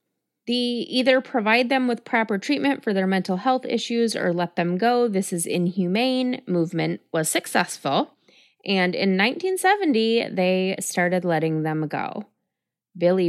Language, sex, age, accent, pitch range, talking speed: English, female, 30-49, American, 170-230 Hz, 140 wpm